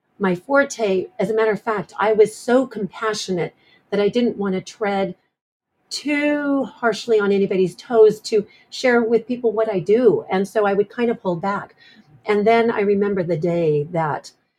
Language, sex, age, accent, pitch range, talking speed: English, female, 40-59, American, 175-215 Hz, 180 wpm